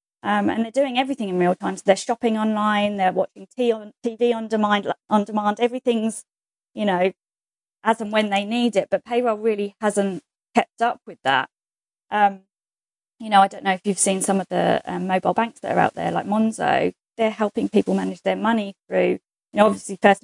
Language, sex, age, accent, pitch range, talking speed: English, female, 20-39, British, 195-225 Hz, 210 wpm